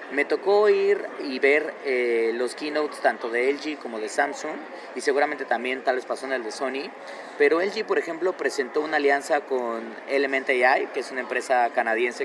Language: Spanish